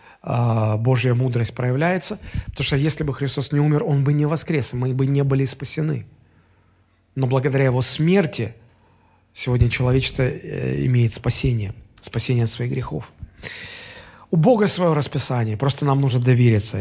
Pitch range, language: 115-165 Hz, Russian